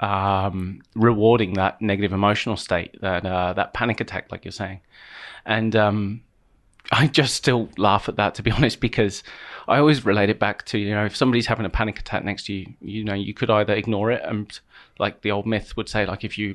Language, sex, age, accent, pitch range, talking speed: English, male, 30-49, British, 100-115 Hz, 220 wpm